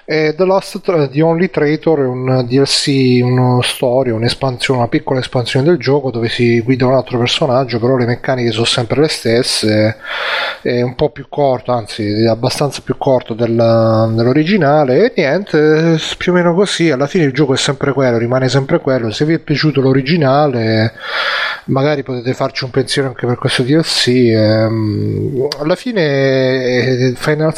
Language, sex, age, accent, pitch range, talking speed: Italian, male, 30-49, native, 120-145 Hz, 155 wpm